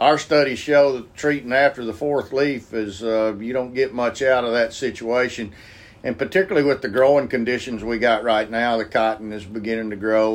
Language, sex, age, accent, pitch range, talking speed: English, male, 50-69, American, 110-130 Hz, 205 wpm